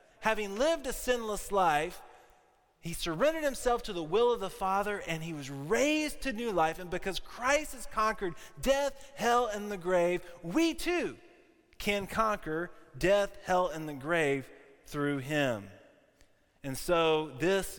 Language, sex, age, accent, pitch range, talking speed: English, male, 20-39, American, 140-200 Hz, 150 wpm